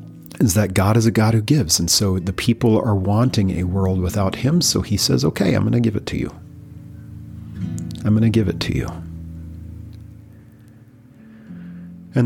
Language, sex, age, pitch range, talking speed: English, male, 40-59, 90-105 Hz, 180 wpm